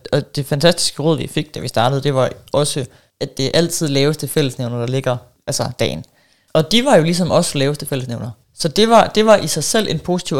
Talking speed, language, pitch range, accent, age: 225 wpm, Danish, 135-175 Hz, native, 30-49